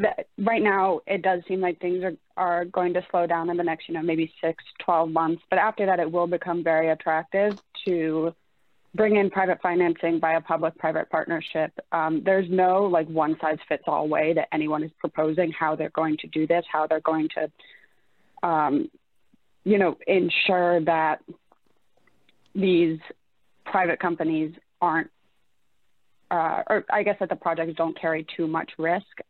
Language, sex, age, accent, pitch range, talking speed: English, female, 20-39, American, 160-185 Hz, 165 wpm